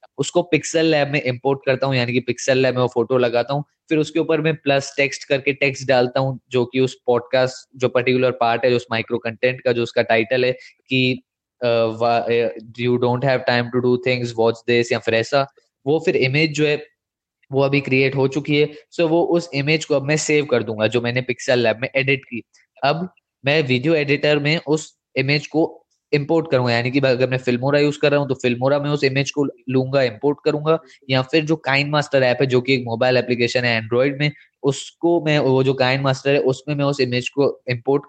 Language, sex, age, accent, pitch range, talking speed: Hindi, male, 20-39, native, 125-145 Hz, 120 wpm